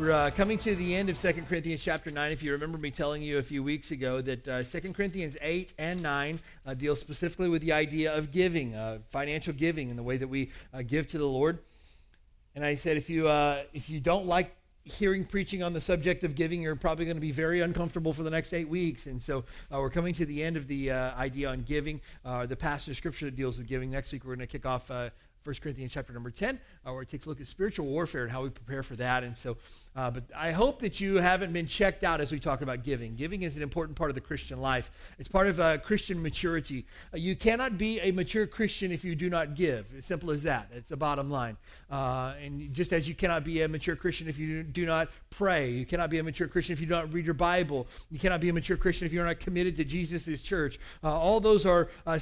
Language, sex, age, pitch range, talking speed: English, male, 40-59, 135-175 Hz, 260 wpm